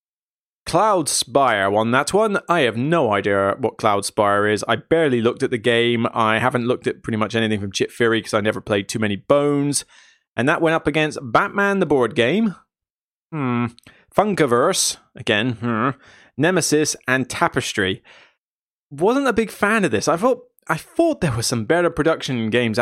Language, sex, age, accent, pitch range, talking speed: English, male, 20-39, British, 125-190 Hz, 175 wpm